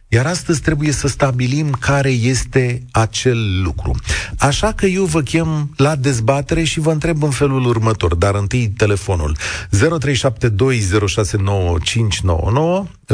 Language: Romanian